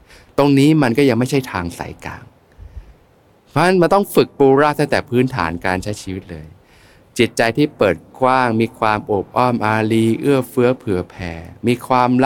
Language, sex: Thai, male